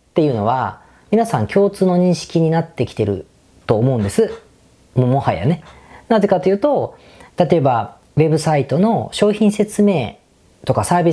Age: 40-59